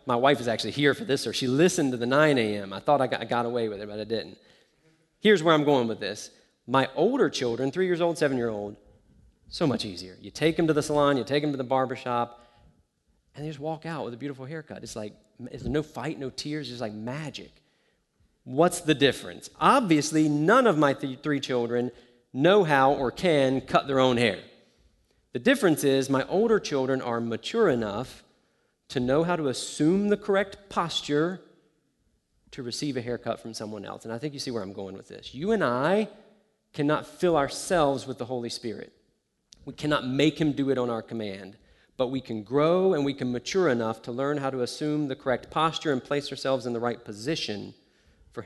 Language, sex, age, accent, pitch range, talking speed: English, male, 40-59, American, 120-150 Hz, 210 wpm